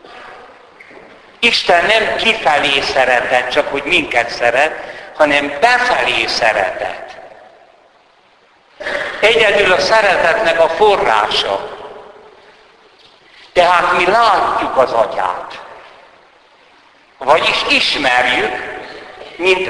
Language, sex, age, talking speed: Hungarian, male, 60-79, 75 wpm